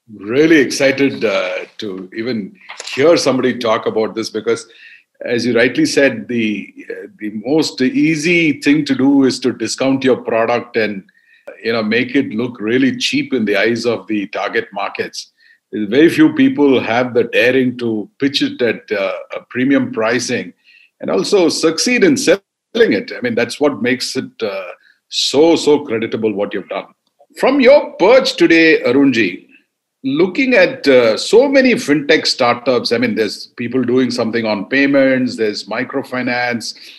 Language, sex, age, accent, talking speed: Hindi, male, 50-69, native, 160 wpm